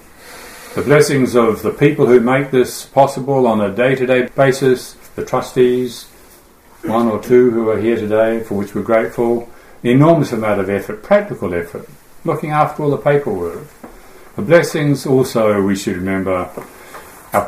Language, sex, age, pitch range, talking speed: English, male, 60-79, 100-130 Hz, 155 wpm